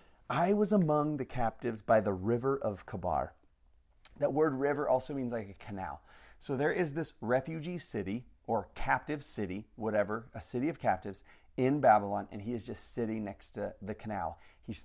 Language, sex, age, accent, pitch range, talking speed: English, male, 30-49, American, 105-130 Hz, 180 wpm